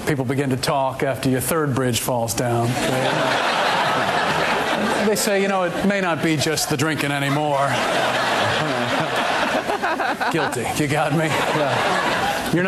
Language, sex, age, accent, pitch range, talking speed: English, male, 40-59, American, 135-180 Hz, 140 wpm